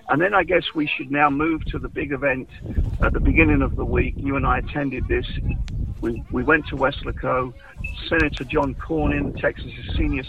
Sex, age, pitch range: male, 50-69, 125-150 Hz